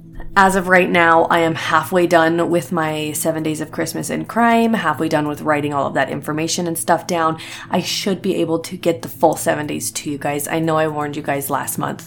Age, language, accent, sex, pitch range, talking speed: 20-39, English, American, female, 155-185 Hz, 240 wpm